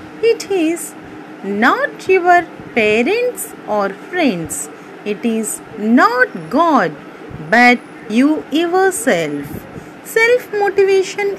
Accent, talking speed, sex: native, 90 wpm, female